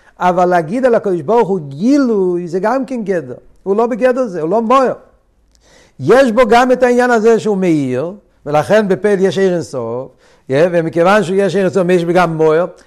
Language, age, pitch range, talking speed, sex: Hebrew, 60-79, 135-195 Hz, 175 wpm, male